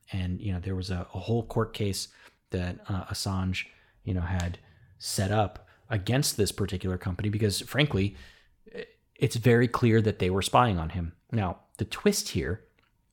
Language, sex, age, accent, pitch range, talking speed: English, male, 30-49, American, 90-110 Hz, 170 wpm